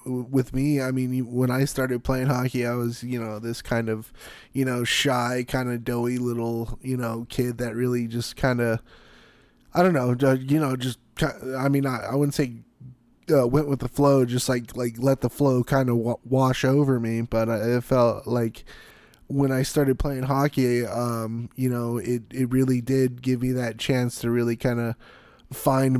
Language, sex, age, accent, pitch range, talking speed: English, male, 20-39, American, 120-130 Hz, 195 wpm